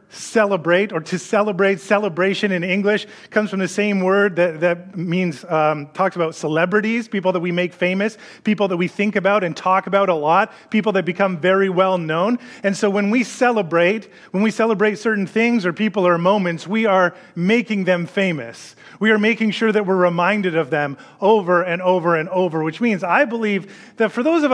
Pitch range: 180-220 Hz